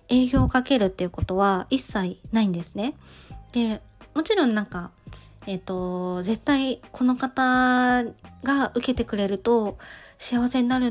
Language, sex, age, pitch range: Japanese, female, 20-39, 195-255 Hz